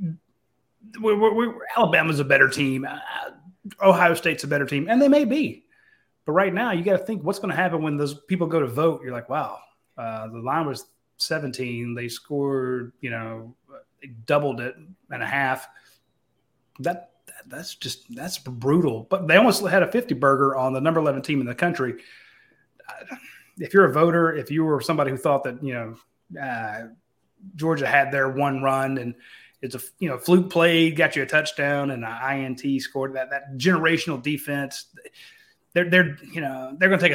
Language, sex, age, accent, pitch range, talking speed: English, male, 30-49, American, 135-175 Hz, 185 wpm